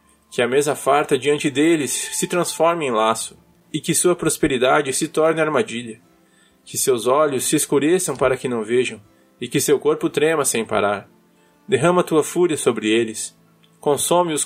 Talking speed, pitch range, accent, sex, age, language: 160 wpm, 130-175 Hz, Brazilian, male, 20-39, Portuguese